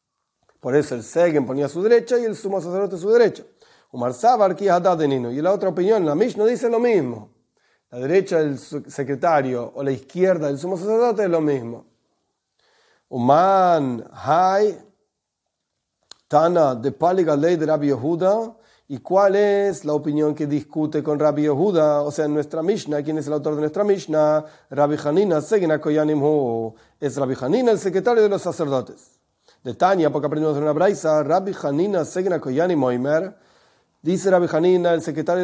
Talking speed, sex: 155 wpm, male